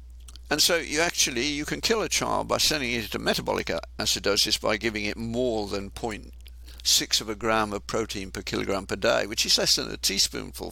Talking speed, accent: 200 wpm, British